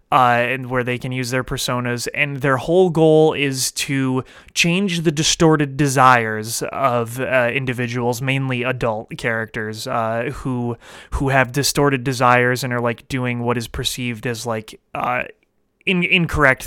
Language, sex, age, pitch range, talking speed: English, male, 30-49, 125-165 Hz, 150 wpm